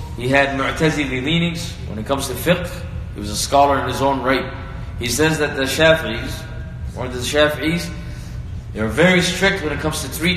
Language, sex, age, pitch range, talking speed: English, male, 20-39, 115-155 Hz, 190 wpm